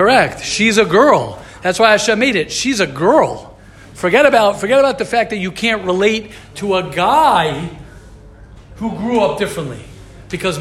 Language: English